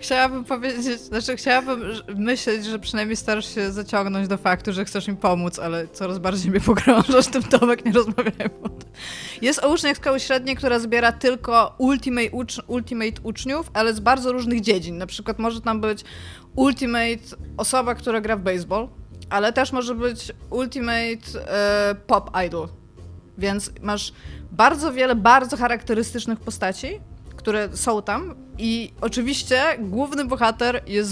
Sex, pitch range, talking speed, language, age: female, 205-245 Hz, 145 wpm, Polish, 20-39